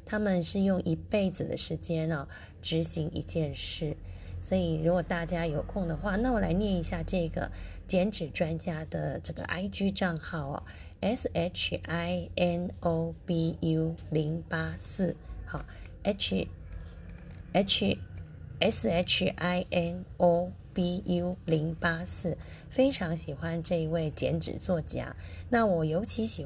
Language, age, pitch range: Chinese, 20-39, 155-185 Hz